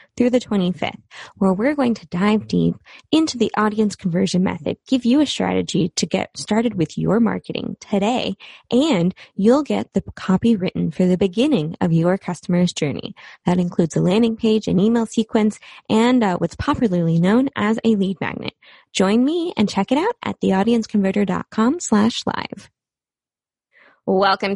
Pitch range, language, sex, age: 185-260 Hz, English, female, 20-39